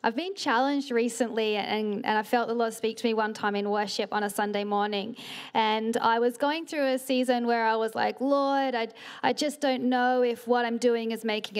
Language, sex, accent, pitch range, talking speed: English, female, Australian, 225-275 Hz, 230 wpm